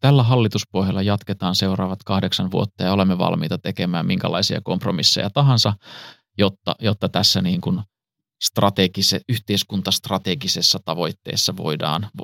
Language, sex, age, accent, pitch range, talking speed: Finnish, male, 30-49, native, 95-115 Hz, 105 wpm